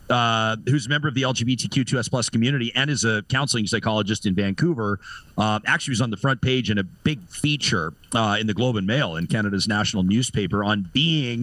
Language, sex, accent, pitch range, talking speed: English, male, American, 105-130 Hz, 205 wpm